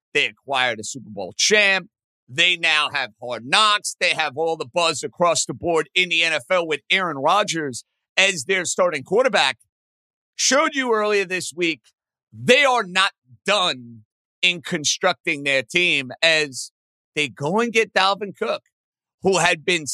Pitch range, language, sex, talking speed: 145-200 Hz, English, male, 155 wpm